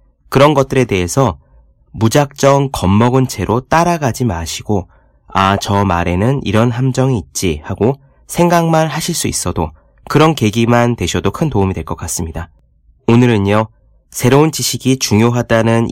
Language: Korean